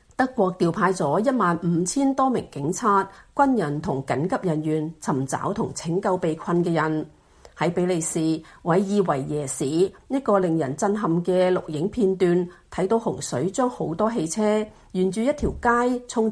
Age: 40-59